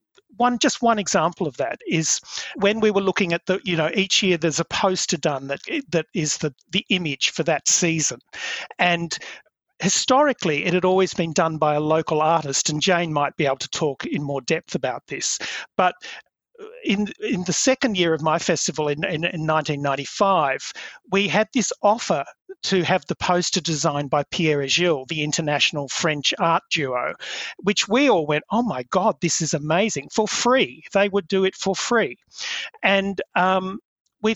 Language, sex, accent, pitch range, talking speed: English, male, Australian, 160-215 Hz, 180 wpm